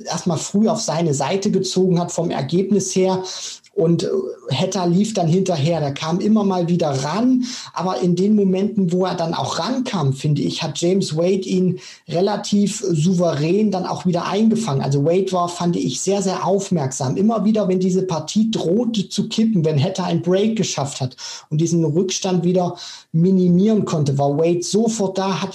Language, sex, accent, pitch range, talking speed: German, male, German, 160-190 Hz, 175 wpm